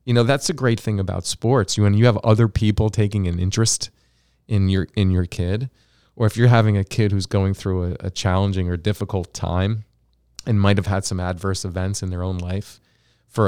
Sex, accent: male, American